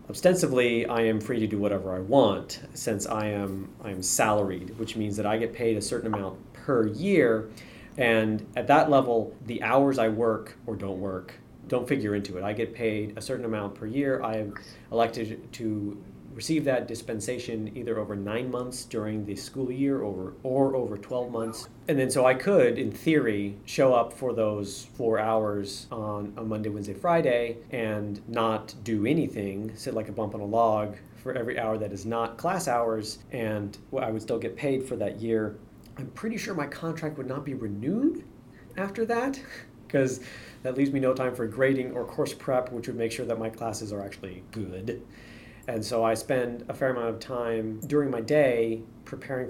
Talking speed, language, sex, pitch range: 195 wpm, English, male, 110-130 Hz